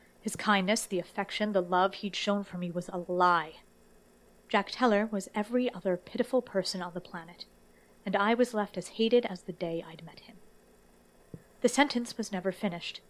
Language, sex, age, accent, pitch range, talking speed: English, female, 30-49, American, 180-210 Hz, 185 wpm